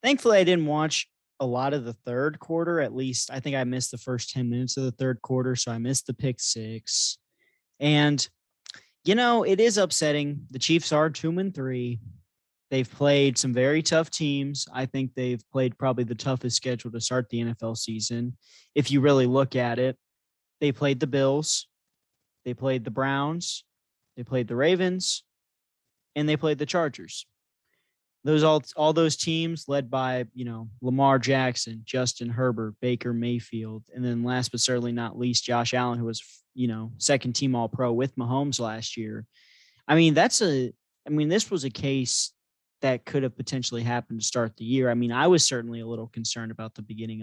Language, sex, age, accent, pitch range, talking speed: English, male, 20-39, American, 120-145 Hz, 190 wpm